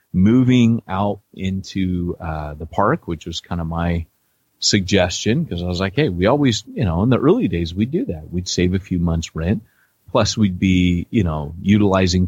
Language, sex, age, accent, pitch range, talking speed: English, male, 30-49, American, 85-105 Hz, 195 wpm